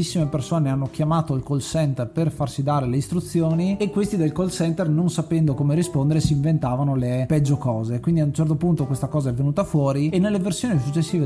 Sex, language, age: male, Italian, 30-49